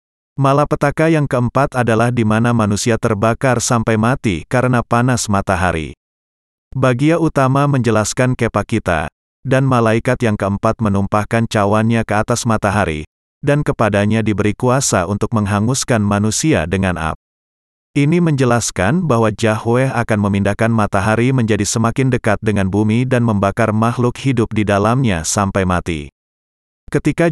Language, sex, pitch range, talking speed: Indonesian, male, 100-125 Hz, 125 wpm